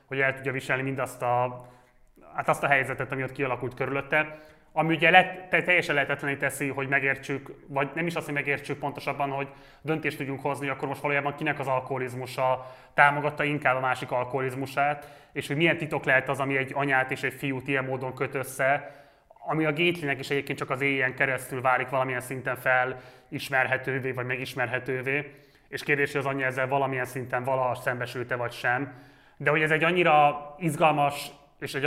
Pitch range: 130-145 Hz